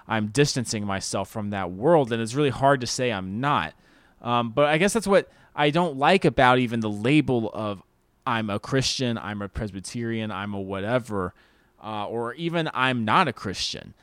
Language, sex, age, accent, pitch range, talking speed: English, male, 20-39, American, 105-150 Hz, 190 wpm